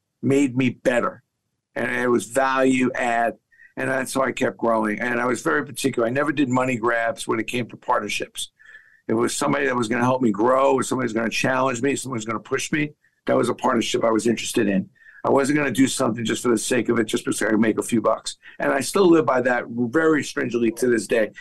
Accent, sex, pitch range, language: American, male, 120-135 Hz, English